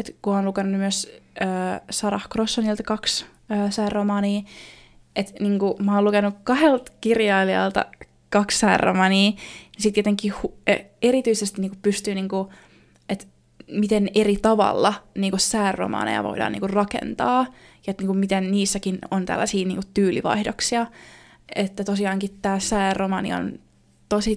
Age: 20-39